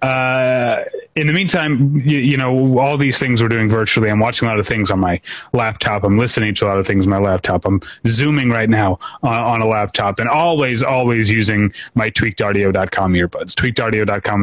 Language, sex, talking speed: English, male, 205 wpm